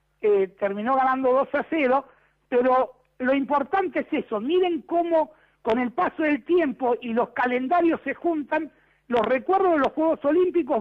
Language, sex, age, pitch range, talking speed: Spanish, male, 60-79, 255-345 Hz, 160 wpm